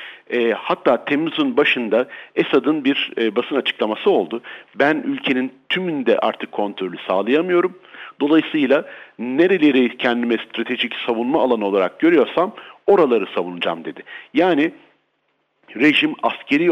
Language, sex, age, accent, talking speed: Turkish, male, 50-69, native, 100 wpm